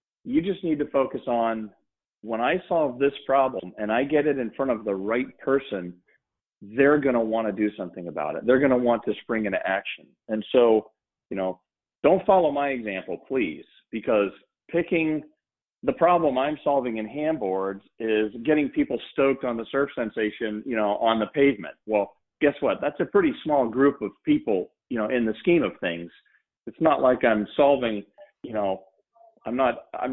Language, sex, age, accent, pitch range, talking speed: English, male, 40-59, American, 110-150 Hz, 180 wpm